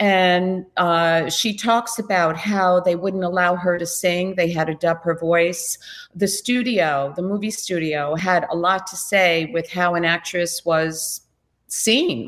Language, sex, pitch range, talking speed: English, female, 165-195 Hz, 165 wpm